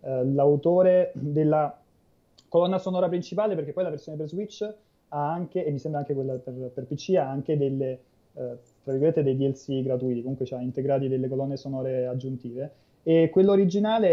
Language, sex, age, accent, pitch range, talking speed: Italian, male, 20-39, native, 130-150 Hz, 180 wpm